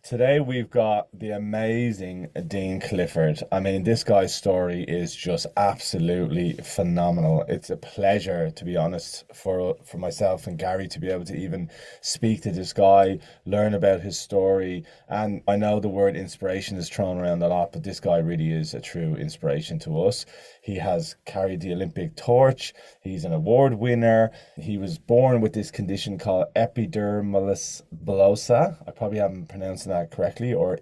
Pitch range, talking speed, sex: 90-115 Hz, 170 wpm, male